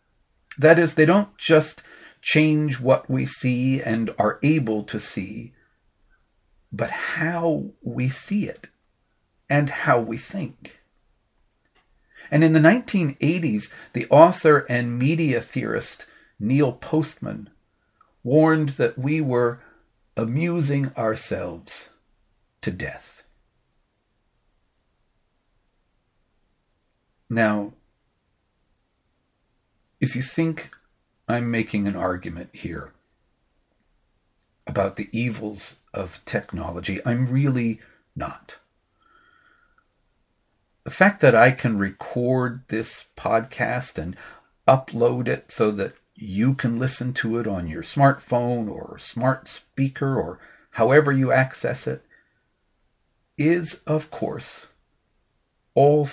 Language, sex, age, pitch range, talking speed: English, male, 50-69, 110-150 Hz, 100 wpm